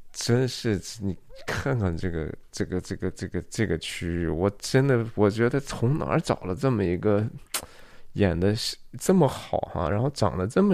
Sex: male